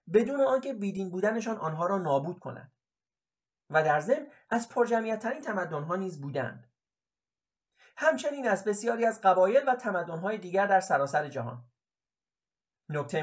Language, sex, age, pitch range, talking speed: Persian, male, 30-49, 160-235 Hz, 135 wpm